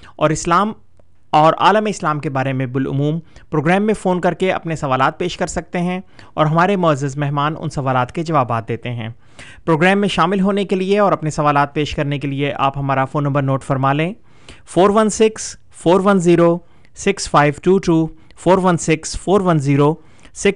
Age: 30-49